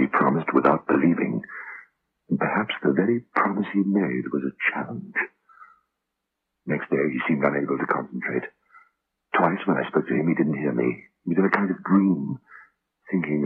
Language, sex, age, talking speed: English, male, 60-79, 170 wpm